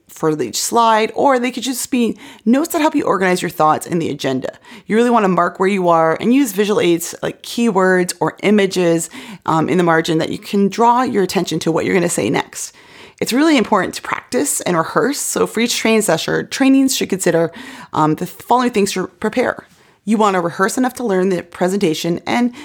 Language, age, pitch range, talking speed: English, 30-49, 165-230 Hz, 210 wpm